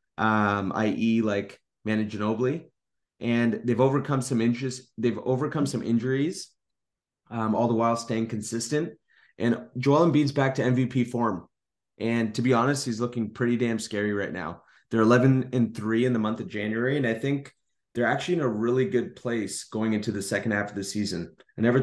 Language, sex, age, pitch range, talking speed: English, male, 30-49, 110-130 Hz, 185 wpm